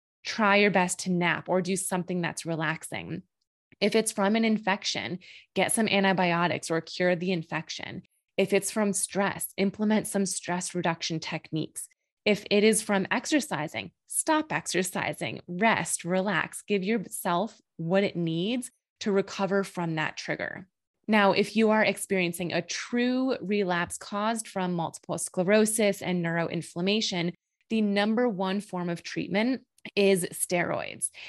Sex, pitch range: female, 175-210 Hz